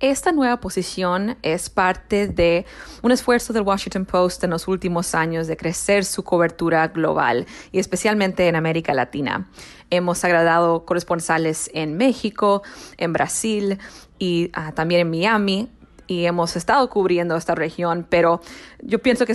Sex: female